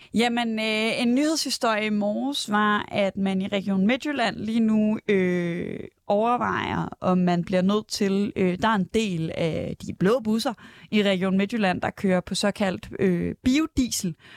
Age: 20-39